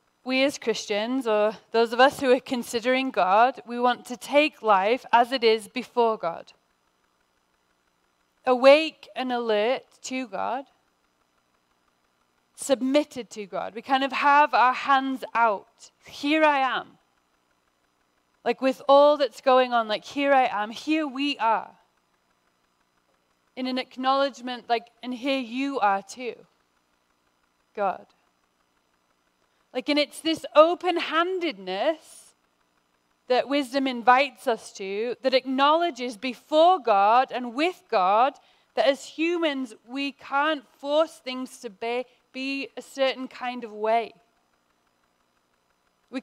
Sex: female